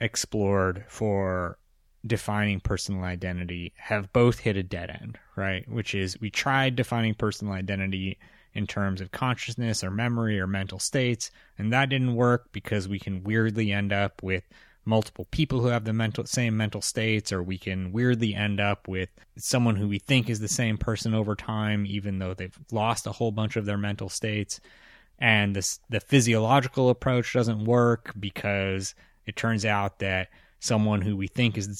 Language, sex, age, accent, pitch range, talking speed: English, male, 20-39, American, 95-115 Hz, 175 wpm